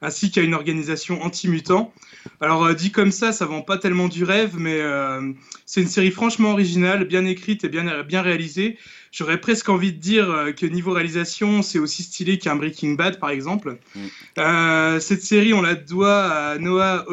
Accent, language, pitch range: French, French, 155-190 Hz